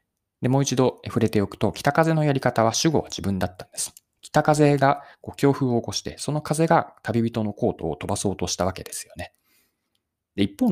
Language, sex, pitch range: Japanese, male, 100-165 Hz